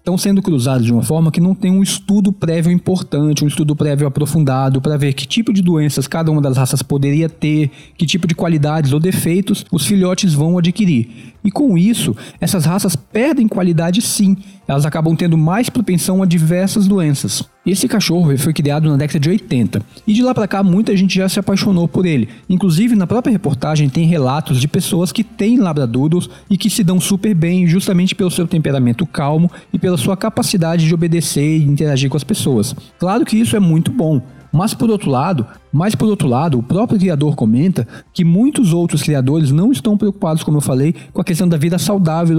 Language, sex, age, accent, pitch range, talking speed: Portuguese, male, 20-39, Brazilian, 150-195 Hz, 195 wpm